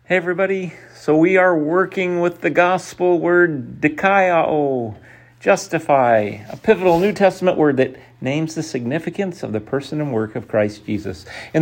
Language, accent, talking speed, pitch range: English, American, 155 wpm, 130-185 Hz